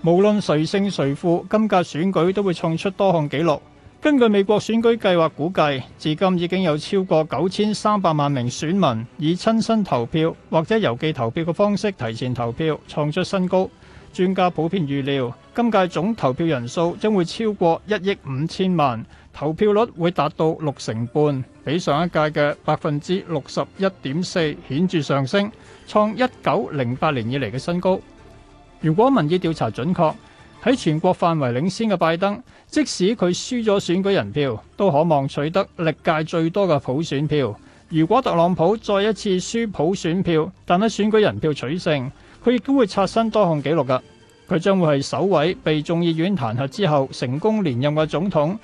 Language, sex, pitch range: Chinese, male, 145-195 Hz